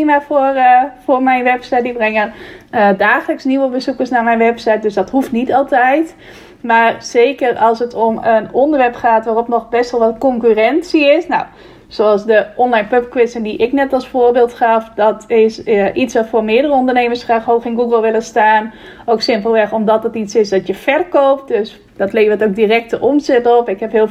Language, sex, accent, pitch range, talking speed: Dutch, female, Dutch, 215-245 Hz, 195 wpm